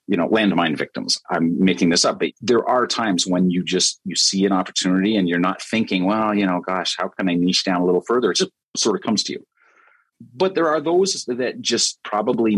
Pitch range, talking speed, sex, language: 90-110 Hz, 235 wpm, male, English